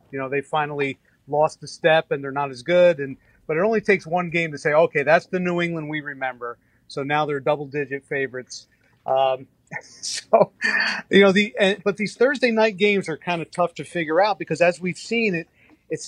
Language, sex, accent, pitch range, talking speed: English, male, American, 135-170 Hz, 210 wpm